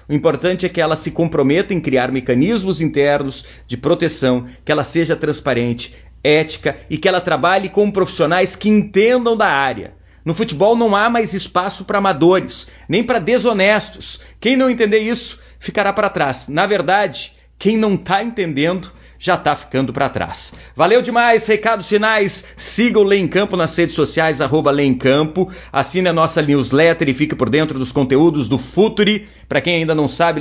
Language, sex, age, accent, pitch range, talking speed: Portuguese, male, 40-59, Brazilian, 145-205 Hz, 175 wpm